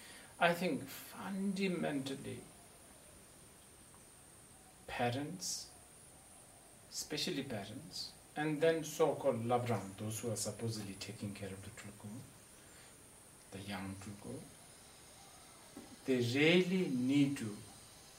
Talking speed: 85 wpm